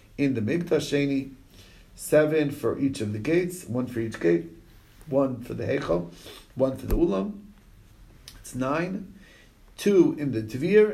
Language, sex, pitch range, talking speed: English, male, 105-135 Hz, 150 wpm